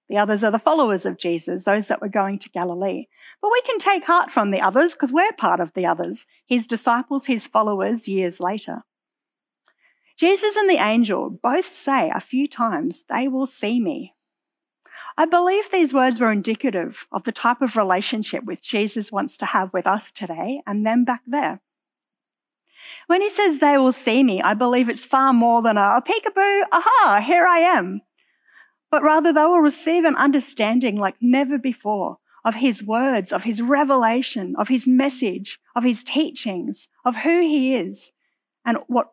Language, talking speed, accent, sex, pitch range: English, 180 wpm, Australian, female, 215-305 Hz